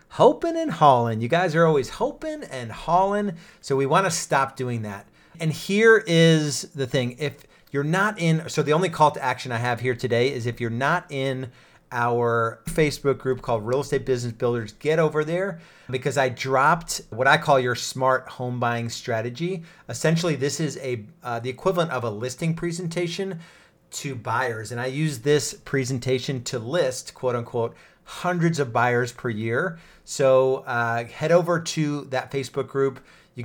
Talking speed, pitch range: 180 wpm, 125-165 Hz